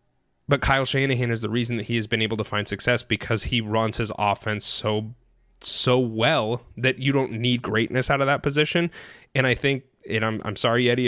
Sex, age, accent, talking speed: male, 20-39, American, 210 wpm